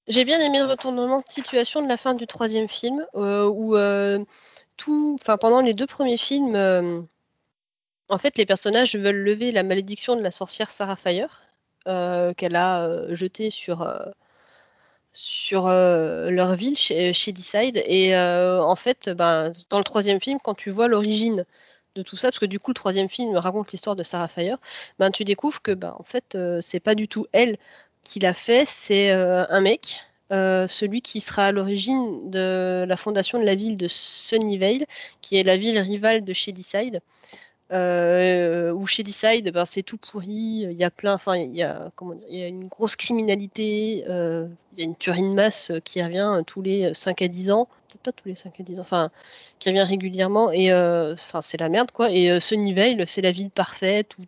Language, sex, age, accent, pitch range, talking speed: French, female, 20-39, French, 180-225 Hz, 205 wpm